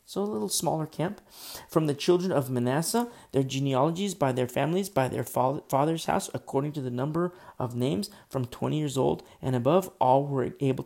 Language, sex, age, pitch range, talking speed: English, male, 40-59, 125-160 Hz, 190 wpm